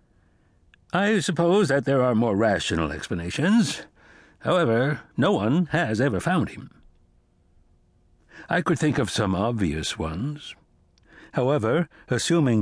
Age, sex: 60-79, male